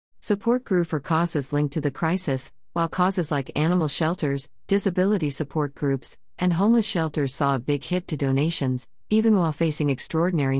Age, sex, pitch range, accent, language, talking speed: 50-69, female, 135-165 Hz, American, English, 165 wpm